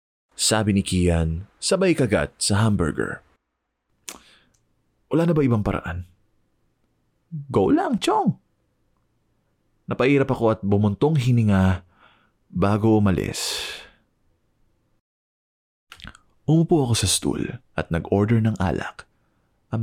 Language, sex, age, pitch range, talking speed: Filipino, male, 20-39, 85-115 Hz, 95 wpm